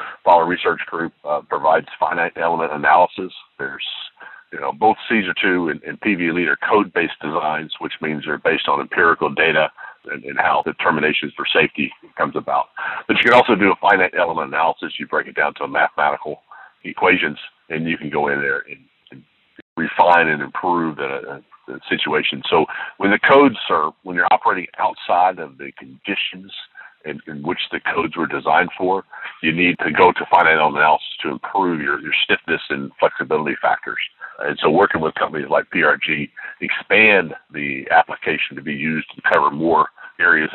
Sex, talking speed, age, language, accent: male, 175 wpm, 50-69, English, American